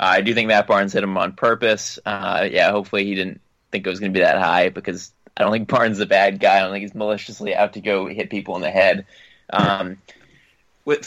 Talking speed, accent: 250 wpm, American